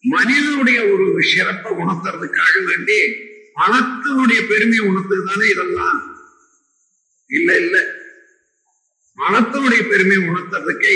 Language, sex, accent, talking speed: Tamil, male, native, 75 wpm